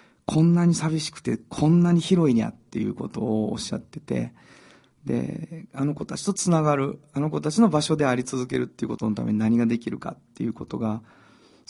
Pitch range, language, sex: 115-170 Hz, Japanese, male